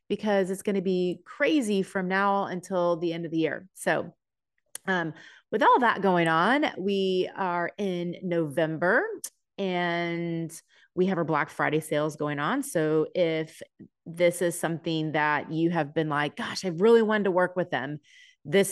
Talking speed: 170 wpm